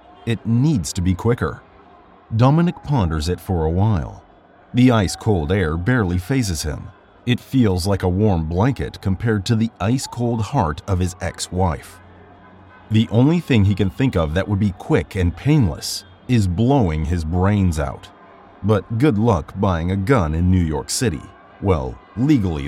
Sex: male